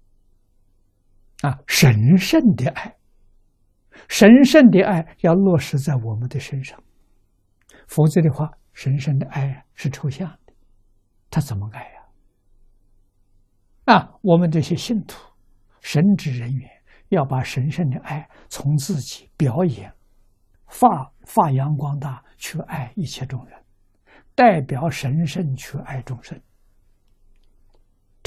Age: 60-79